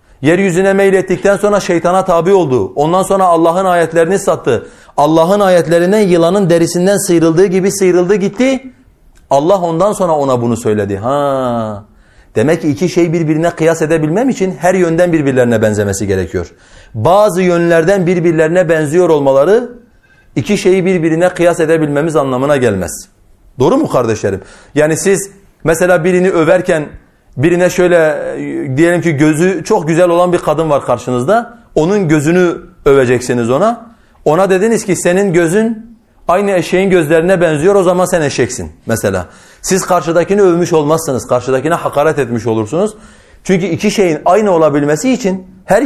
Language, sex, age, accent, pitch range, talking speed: Turkish, male, 40-59, native, 140-190 Hz, 135 wpm